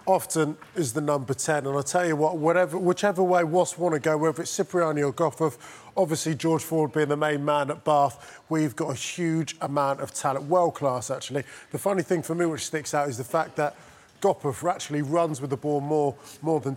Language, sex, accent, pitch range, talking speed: English, male, British, 145-170 Hz, 220 wpm